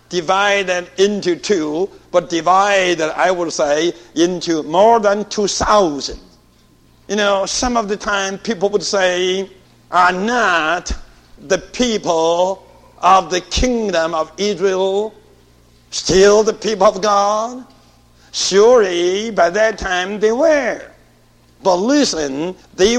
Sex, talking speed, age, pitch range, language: male, 115 wpm, 60-79, 160-220 Hz, English